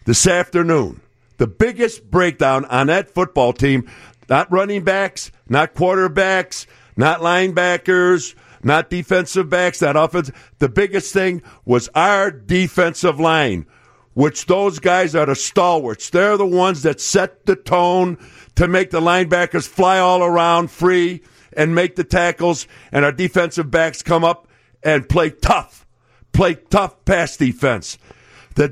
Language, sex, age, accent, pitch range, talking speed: English, male, 50-69, American, 145-190 Hz, 140 wpm